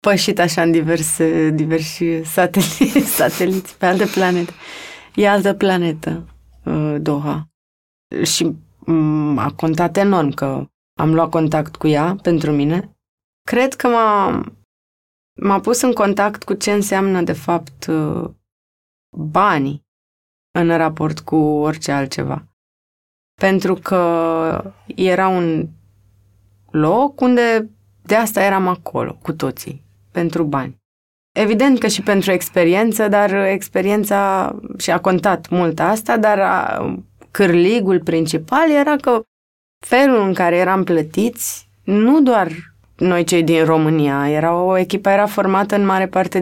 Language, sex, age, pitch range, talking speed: Romanian, female, 20-39, 155-200 Hz, 120 wpm